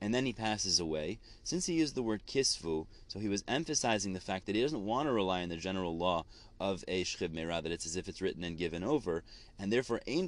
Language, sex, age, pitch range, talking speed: English, male, 30-49, 90-115 Hz, 250 wpm